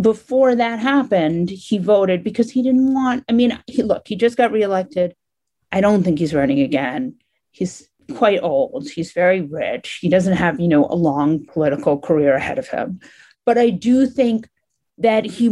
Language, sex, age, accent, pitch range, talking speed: English, female, 40-59, American, 170-225 Hz, 180 wpm